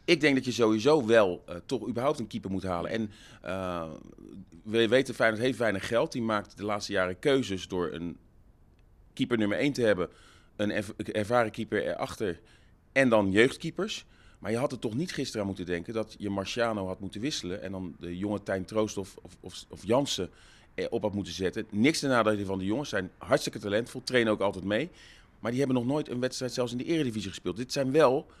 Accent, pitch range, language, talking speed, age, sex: Dutch, 100-130 Hz, Dutch, 210 wpm, 40-59, male